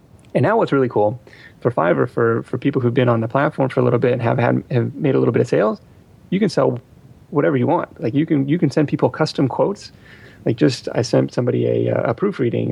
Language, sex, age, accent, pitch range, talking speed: English, male, 30-49, American, 115-140 Hz, 245 wpm